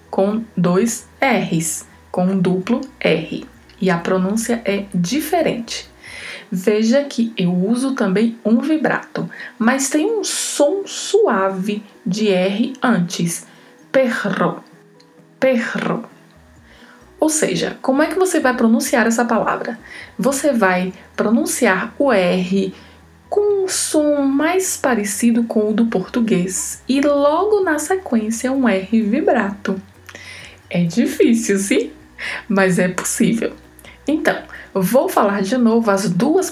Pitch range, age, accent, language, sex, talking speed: 195-275 Hz, 20-39, Brazilian, Portuguese, female, 120 wpm